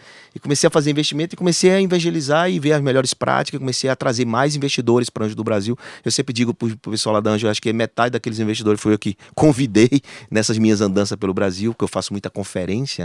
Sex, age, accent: male, 30-49, Brazilian